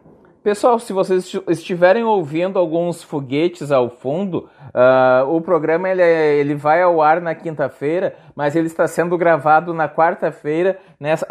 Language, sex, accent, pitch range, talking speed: Portuguese, male, Brazilian, 150-185 Hz, 150 wpm